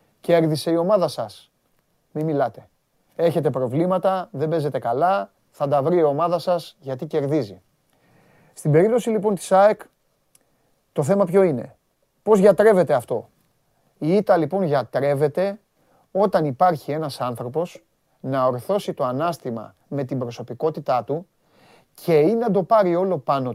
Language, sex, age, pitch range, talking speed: Greek, male, 30-49, 150-230 Hz, 140 wpm